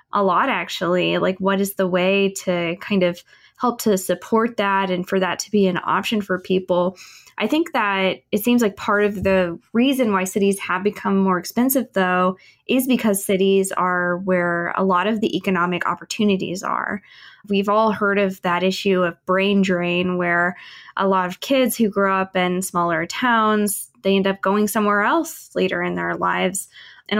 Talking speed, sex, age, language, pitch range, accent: 185 wpm, female, 20-39, English, 185-215 Hz, American